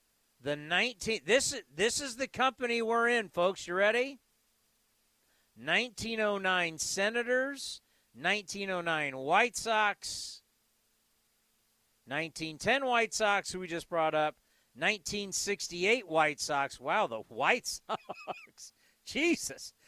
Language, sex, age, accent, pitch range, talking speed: English, male, 40-59, American, 145-215 Hz, 120 wpm